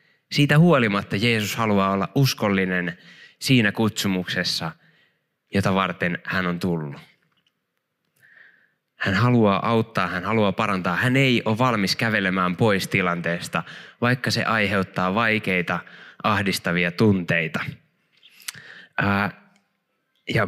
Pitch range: 95-135 Hz